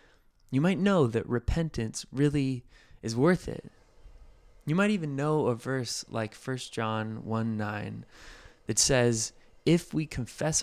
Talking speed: 140 wpm